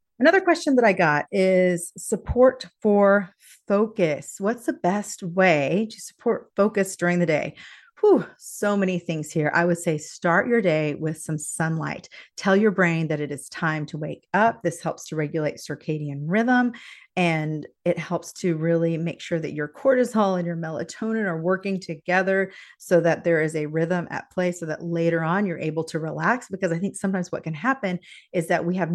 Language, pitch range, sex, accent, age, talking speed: English, 160-200 Hz, female, American, 30-49, 190 wpm